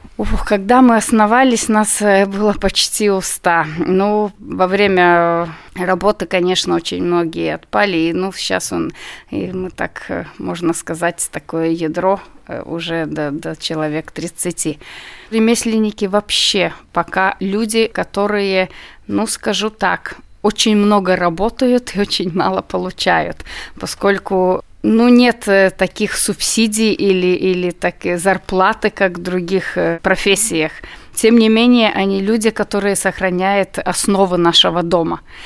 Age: 30-49